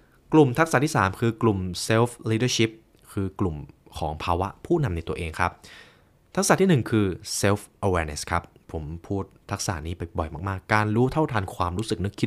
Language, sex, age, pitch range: Thai, male, 20-39, 90-120 Hz